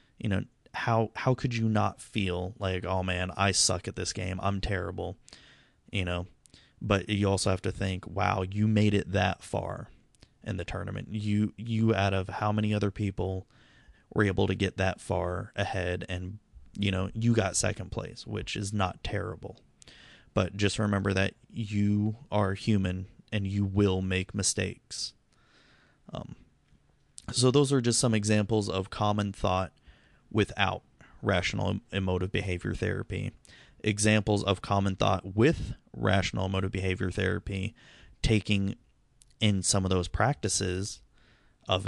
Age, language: 30-49, English